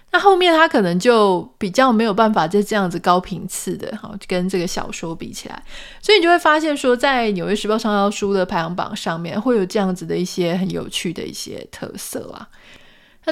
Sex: female